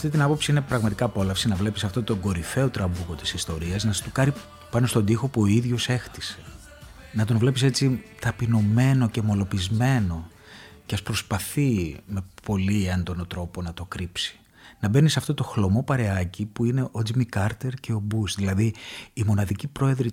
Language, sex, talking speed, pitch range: Greek, male, 175 wpm, 95-130 Hz